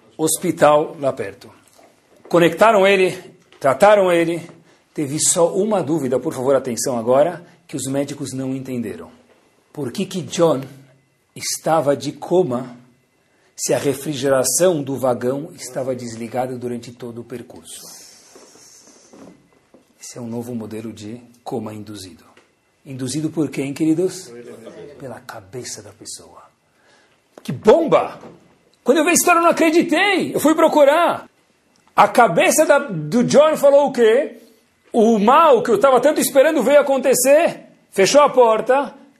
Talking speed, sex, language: 135 wpm, male, Portuguese